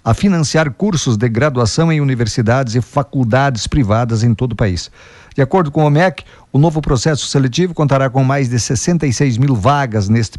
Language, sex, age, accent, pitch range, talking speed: Portuguese, male, 50-69, Brazilian, 120-150 Hz, 180 wpm